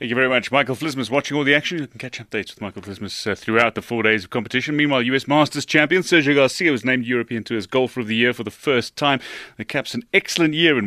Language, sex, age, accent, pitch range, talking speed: English, male, 30-49, British, 110-145 Hz, 265 wpm